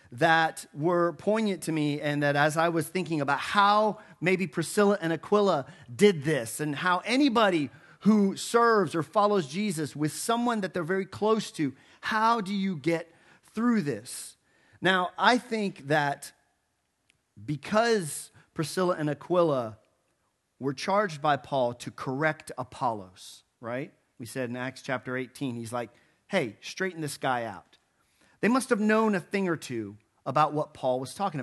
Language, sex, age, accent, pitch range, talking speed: English, male, 40-59, American, 145-195 Hz, 155 wpm